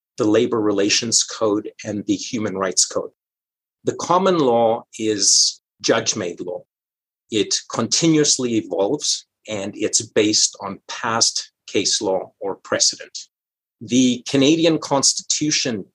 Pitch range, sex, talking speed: 110-135 Hz, male, 115 wpm